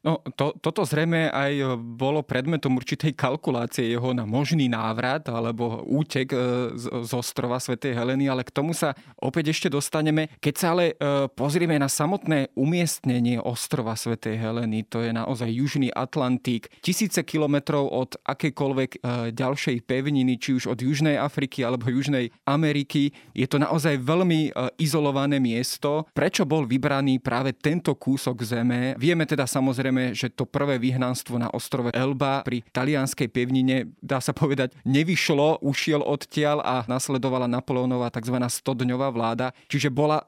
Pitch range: 125-150 Hz